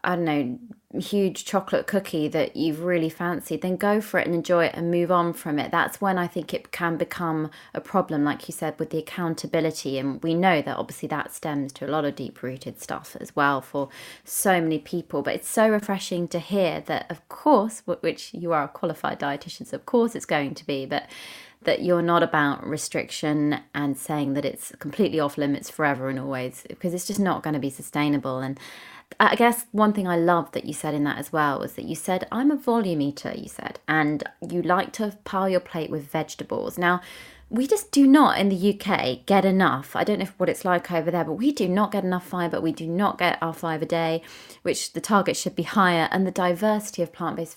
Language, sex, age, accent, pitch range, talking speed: English, female, 20-39, British, 150-190 Hz, 225 wpm